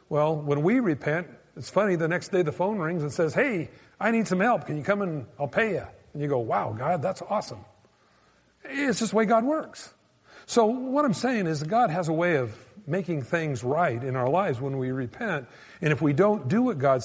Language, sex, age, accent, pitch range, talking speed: English, male, 50-69, American, 145-200 Hz, 230 wpm